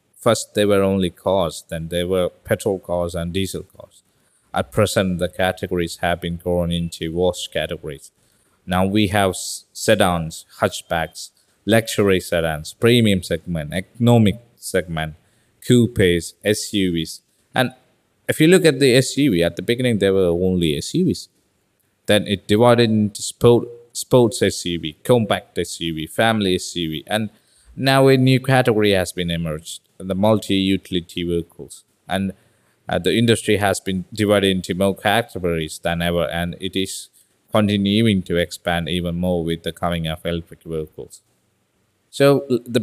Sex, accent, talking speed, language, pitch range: male, Malaysian, 140 wpm, Malayalam, 85-110 Hz